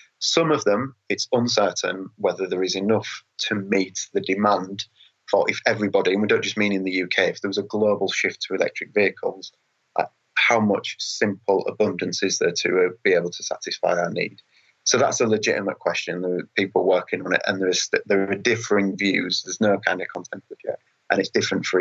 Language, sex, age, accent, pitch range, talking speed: English, male, 20-39, British, 95-110 Hz, 205 wpm